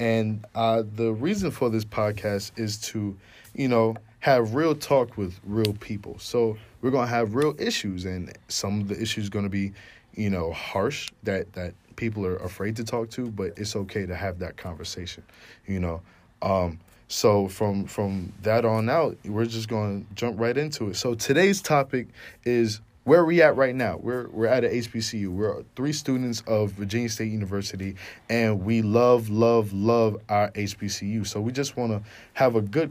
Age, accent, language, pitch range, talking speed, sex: 20-39, American, English, 95-115 Hz, 190 wpm, male